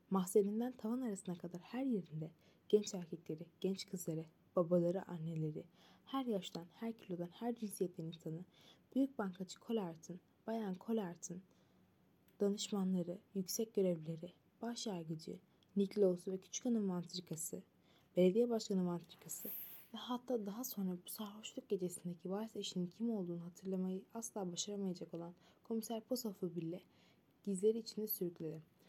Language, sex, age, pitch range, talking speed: Turkish, female, 20-39, 175-215 Hz, 120 wpm